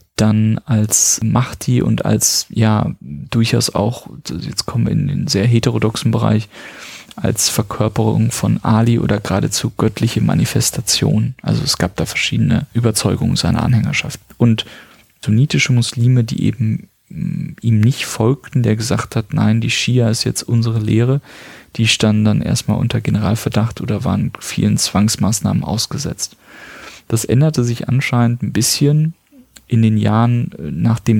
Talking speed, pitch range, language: 135 wpm, 110-125 Hz, German